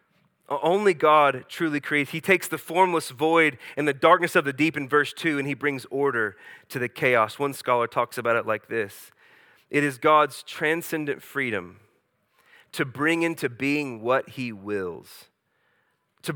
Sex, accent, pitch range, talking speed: male, American, 130-165 Hz, 165 wpm